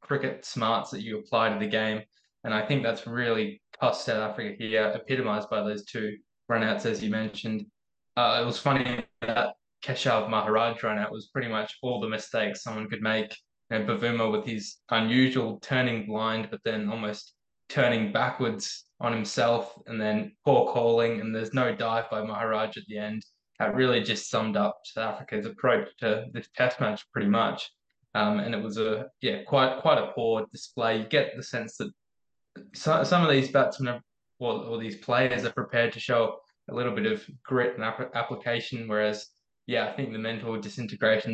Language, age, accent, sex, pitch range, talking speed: English, 10-29, Australian, male, 110-120 Hz, 185 wpm